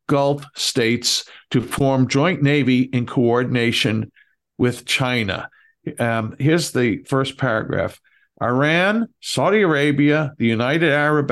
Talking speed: 110 wpm